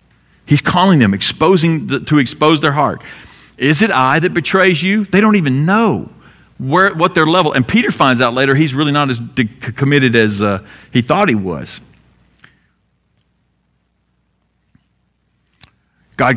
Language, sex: English, male